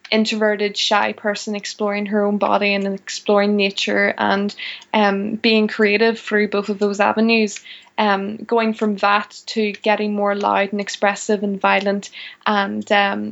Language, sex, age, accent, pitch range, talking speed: English, female, 20-39, Irish, 205-225 Hz, 150 wpm